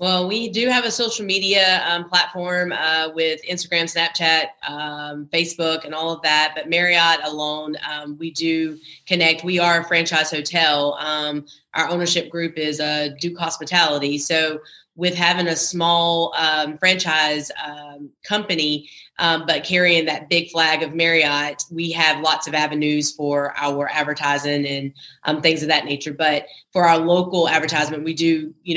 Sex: female